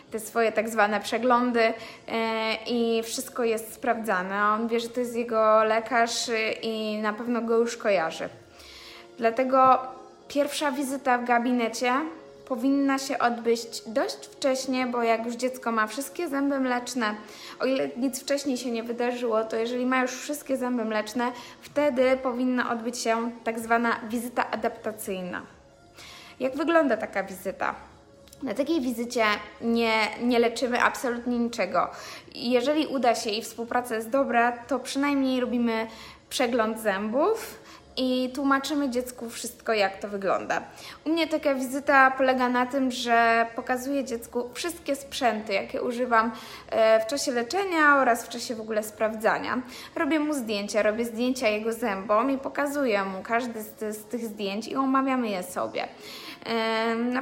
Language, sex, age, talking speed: Polish, female, 20-39, 140 wpm